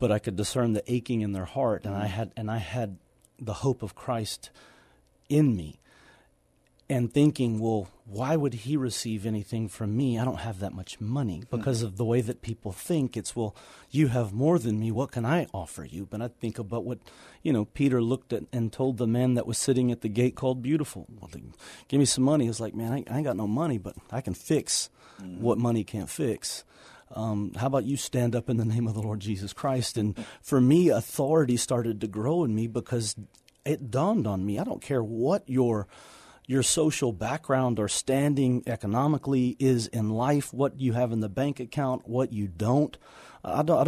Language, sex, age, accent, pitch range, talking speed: English, male, 40-59, American, 110-135 Hz, 210 wpm